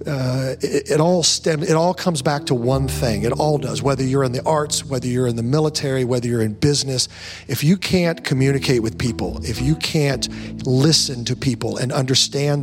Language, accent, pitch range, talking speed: English, American, 125-165 Hz, 205 wpm